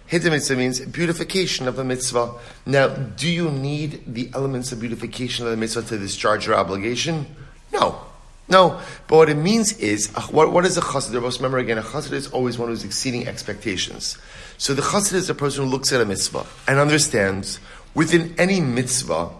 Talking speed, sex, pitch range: 185 wpm, male, 120-160 Hz